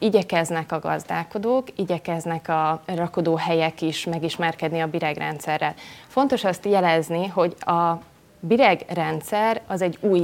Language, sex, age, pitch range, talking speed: Hungarian, female, 30-49, 170-200 Hz, 115 wpm